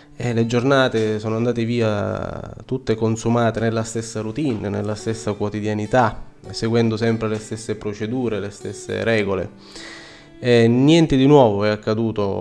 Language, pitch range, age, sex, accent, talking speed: Italian, 105-130 Hz, 20-39, male, native, 125 wpm